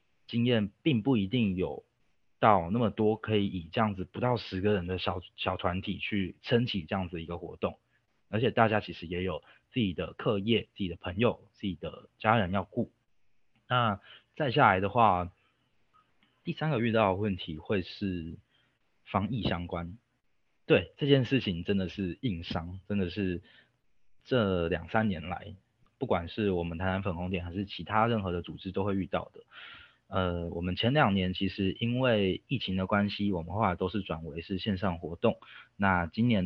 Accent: native